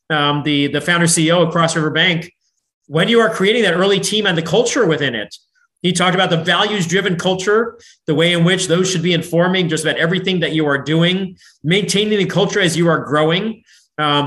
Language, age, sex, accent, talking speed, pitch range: English, 30-49, male, American, 210 wpm, 155-190 Hz